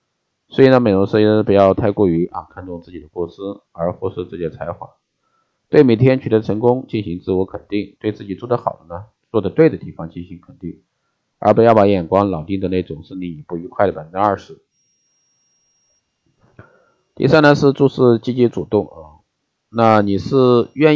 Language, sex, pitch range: Chinese, male, 90-115 Hz